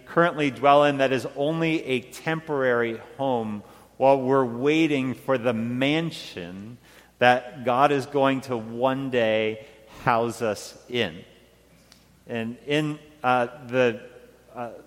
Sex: male